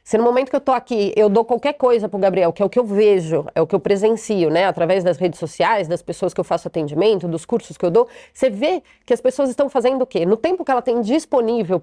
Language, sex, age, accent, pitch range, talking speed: Portuguese, female, 30-49, Brazilian, 200-260 Hz, 285 wpm